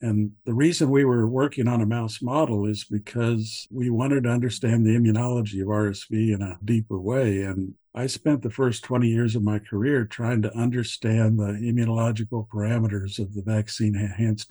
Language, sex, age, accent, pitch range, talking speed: English, male, 60-79, American, 105-125 Hz, 180 wpm